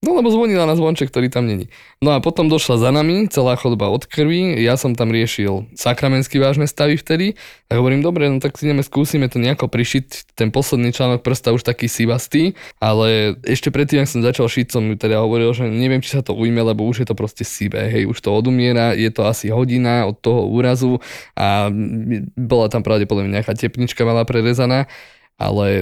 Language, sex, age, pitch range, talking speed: Slovak, male, 20-39, 110-130 Hz, 205 wpm